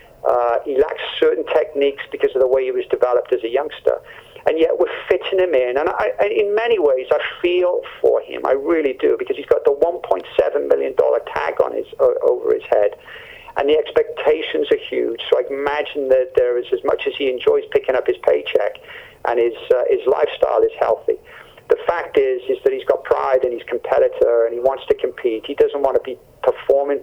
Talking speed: 210 wpm